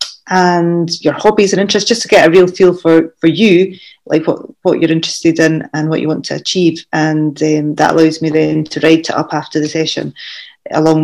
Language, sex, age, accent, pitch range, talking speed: English, female, 30-49, British, 160-185 Hz, 220 wpm